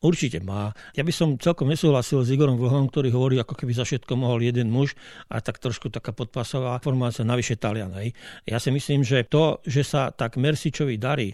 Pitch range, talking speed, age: 125-155 Hz, 195 wpm, 50-69